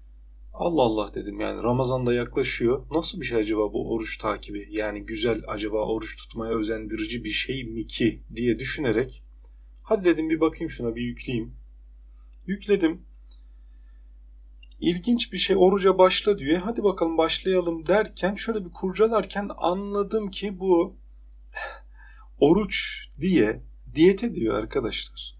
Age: 40-59